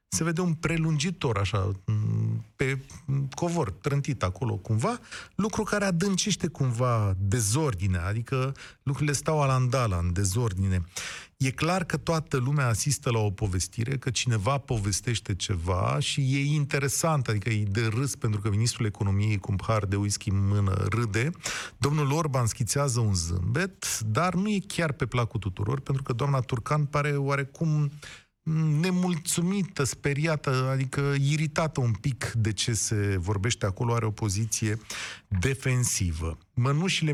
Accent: native